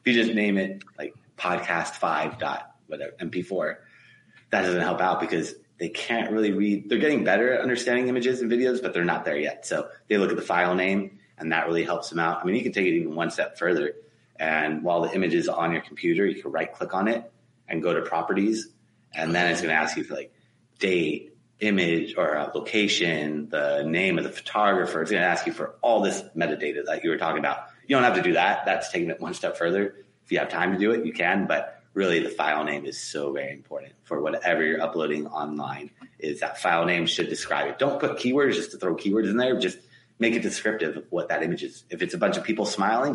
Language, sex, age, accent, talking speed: English, male, 30-49, American, 240 wpm